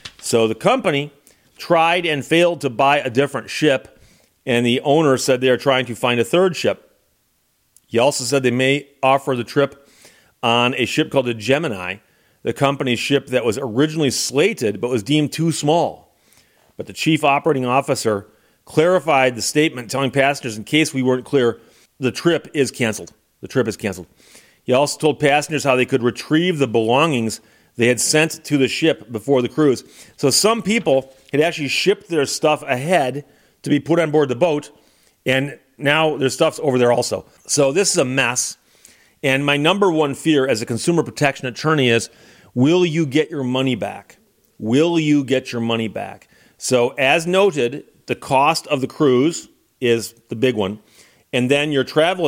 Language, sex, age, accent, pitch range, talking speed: English, male, 40-59, American, 120-150 Hz, 180 wpm